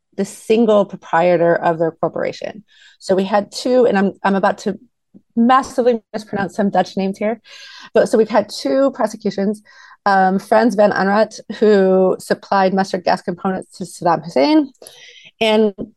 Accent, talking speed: American, 150 wpm